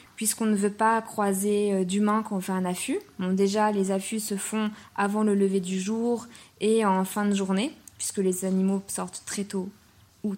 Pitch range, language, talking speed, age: 195-220 Hz, French, 195 wpm, 20-39